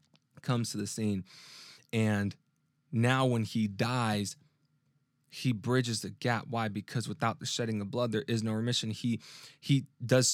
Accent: American